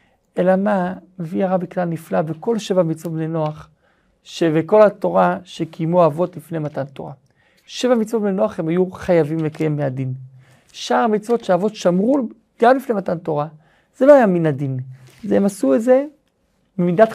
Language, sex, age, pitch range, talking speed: Hebrew, male, 40-59, 155-195 Hz, 160 wpm